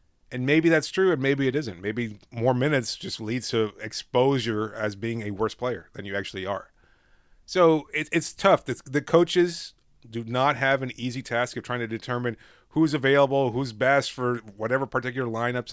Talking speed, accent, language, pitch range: 180 wpm, American, English, 110-135 Hz